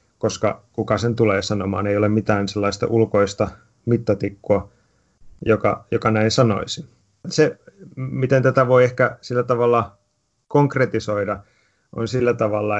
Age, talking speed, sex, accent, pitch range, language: 30-49, 120 wpm, male, native, 105-120 Hz, Finnish